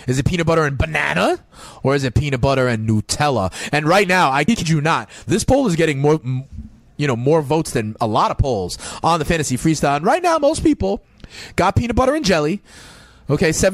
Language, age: English, 30-49